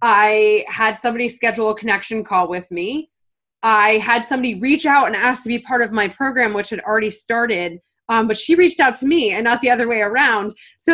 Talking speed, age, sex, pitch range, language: 220 wpm, 20-39, female, 205-255 Hz, English